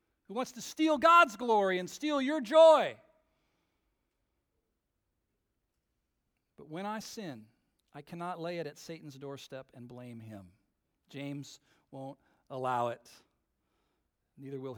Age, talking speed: 50-69, 120 wpm